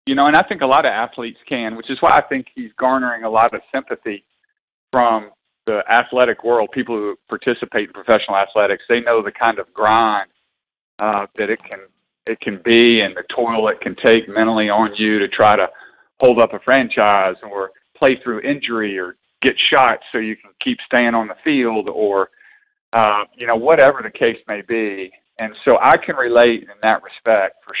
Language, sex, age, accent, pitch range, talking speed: English, male, 40-59, American, 110-140 Hz, 200 wpm